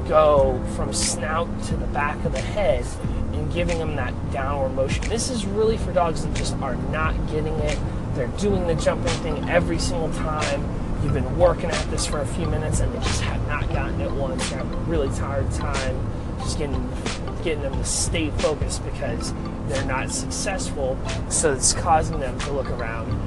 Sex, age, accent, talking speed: male, 30-49, American, 190 wpm